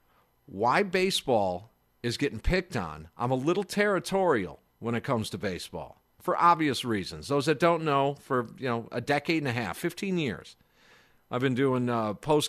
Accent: American